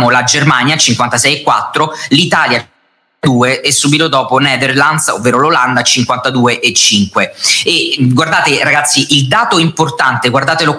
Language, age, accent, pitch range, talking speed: Italian, 30-49, native, 130-160 Hz, 105 wpm